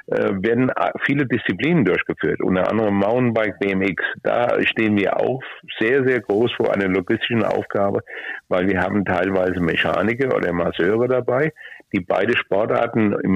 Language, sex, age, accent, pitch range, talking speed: German, male, 60-79, German, 95-125 Hz, 140 wpm